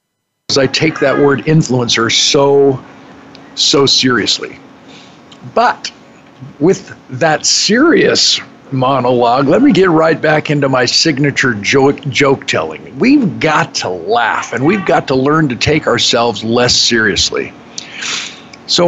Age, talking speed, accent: 50-69, 125 wpm, American